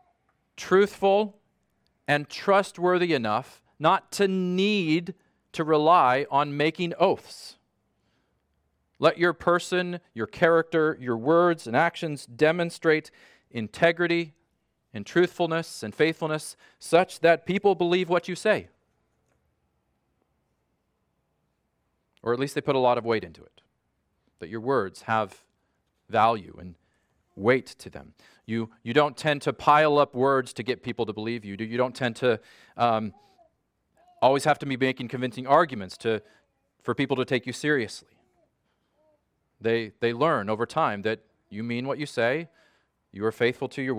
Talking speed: 140 wpm